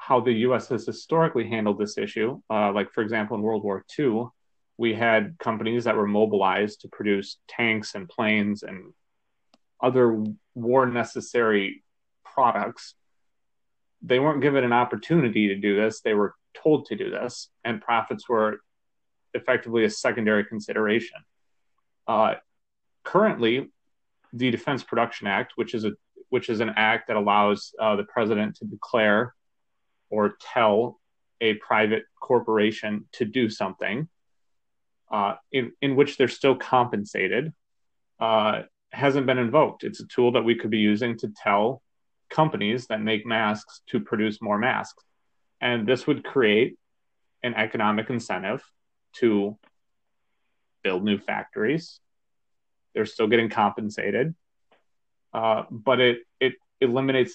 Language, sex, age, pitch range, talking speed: English, male, 30-49, 105-125 Hz, 135 wpm